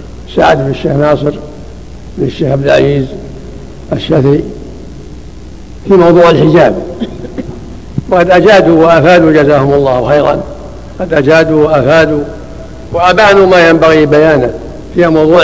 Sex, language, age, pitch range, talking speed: male, Arabic, 70-89, 155-185 Hz, 95 wpm